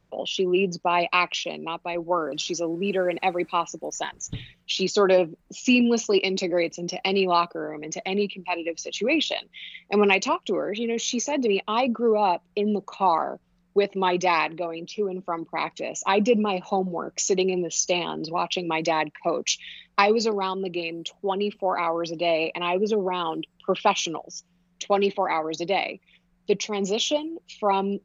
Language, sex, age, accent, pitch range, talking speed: English, female, 20-39, American, 170-200 Hz, 185 wpm